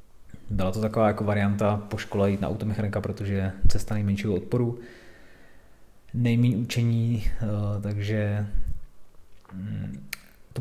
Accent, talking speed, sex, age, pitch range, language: native, 105 wpm, male, 20-39, 100-115 Hz, Czech